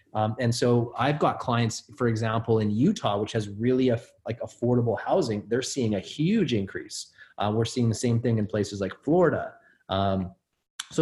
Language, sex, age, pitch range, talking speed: English, male, 30-49, 105-135 Hz, 185 wpm